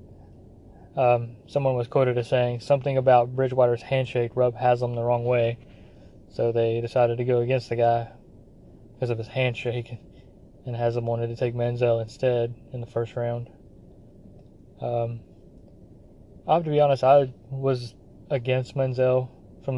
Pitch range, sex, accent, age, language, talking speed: 115-130 Hz, male, American, 20-39, English, 150 wpm